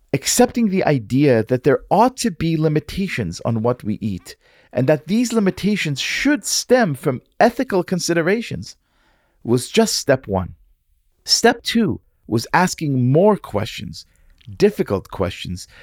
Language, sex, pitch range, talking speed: English, male, 120-185 Hz, 130 wpm